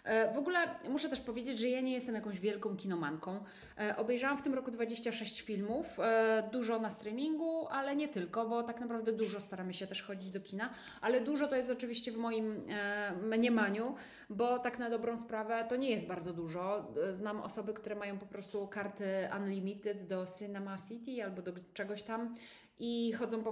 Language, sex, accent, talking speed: Polish, female, native, 180 wpm